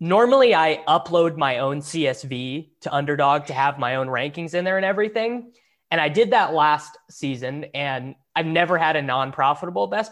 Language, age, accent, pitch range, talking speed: English, 20-39, American, 140-180 Hz, 180 wpm